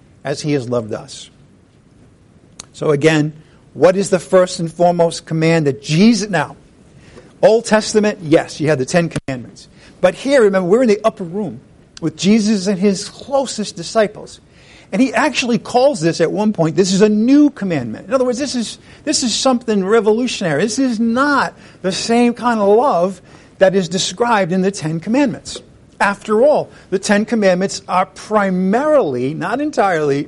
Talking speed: 170 wpm